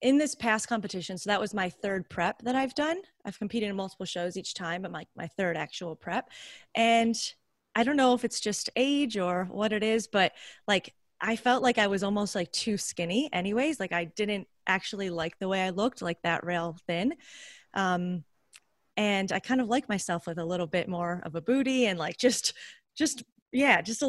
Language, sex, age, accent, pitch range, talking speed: English, female, 20-39, American, 170-220 Hz, 210 wpm